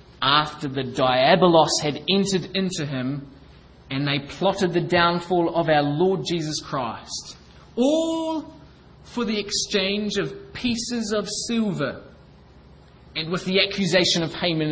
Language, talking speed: English, 125 wpm